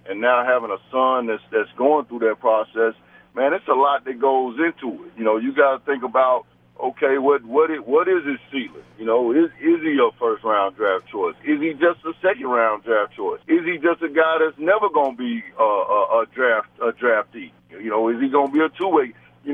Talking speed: 245 wpm